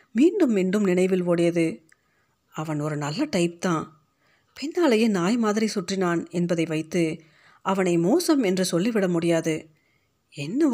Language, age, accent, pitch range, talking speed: Tamil, 40-59, native, 165-210 Hz, 115 wpm